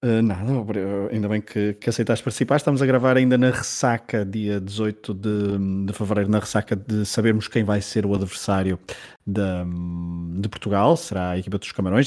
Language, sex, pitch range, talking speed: Portuguese, male, 100-115 Hz, 175 wpm